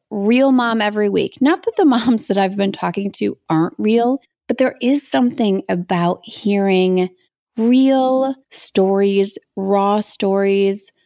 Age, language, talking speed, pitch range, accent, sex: 30-49, English, 135 wpm, 175-210 Hz, American, female